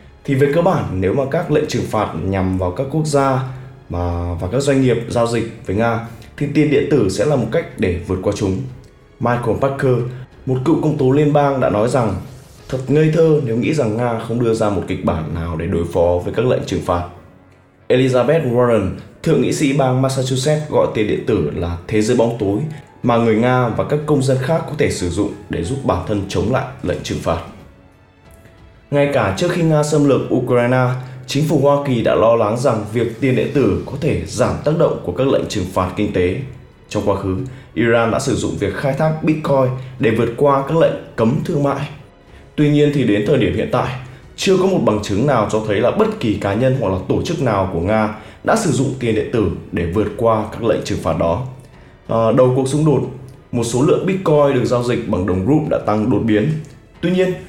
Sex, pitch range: male, 105-140 Hz